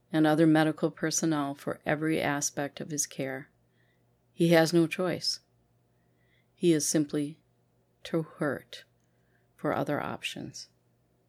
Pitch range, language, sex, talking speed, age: 140-170 Hz, English, female, 115 wpm, 40-59